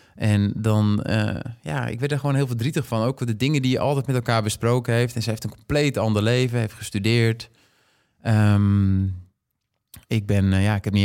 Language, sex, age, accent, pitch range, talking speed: Dutch, male, 20-39, Dutch, 100-115 Hz, 205 wpm